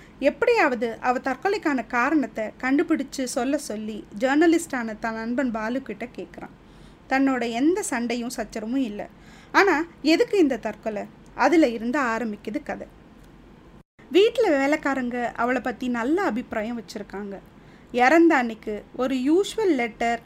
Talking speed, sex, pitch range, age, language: 110 wpm, female, 230-315 Hz, 20-39, Tamil